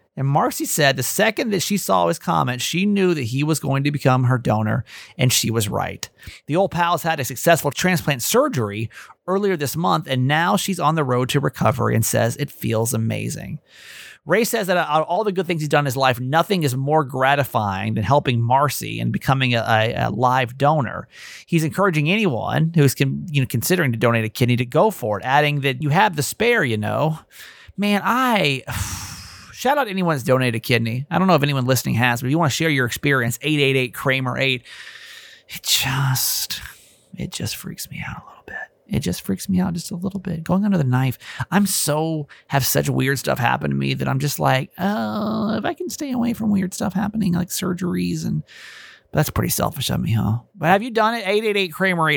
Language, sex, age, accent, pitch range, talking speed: English, male, 30-49, American, 125-185 Hz, 215 wpm